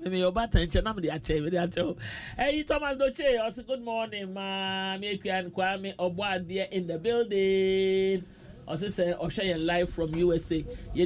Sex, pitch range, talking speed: male, 175-220 Hz, 115 wpm